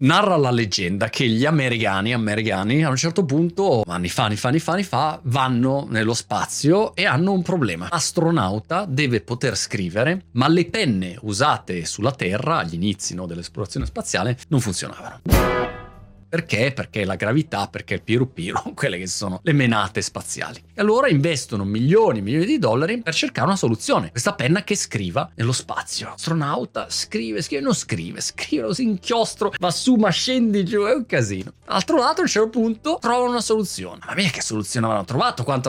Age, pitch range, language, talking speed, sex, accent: 30-49, 110-175 Hz, Italian, 175 wpm, male, native